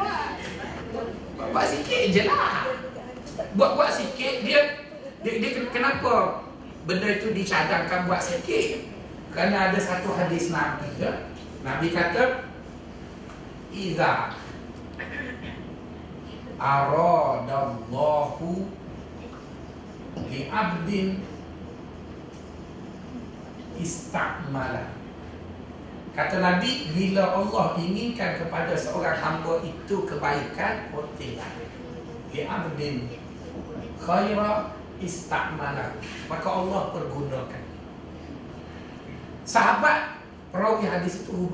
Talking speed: 70 wpm